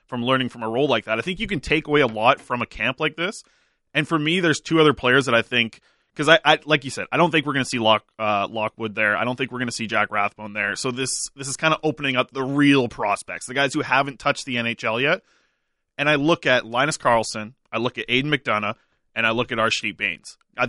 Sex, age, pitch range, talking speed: male, 20-39, 115-145 Hz, 275 wpm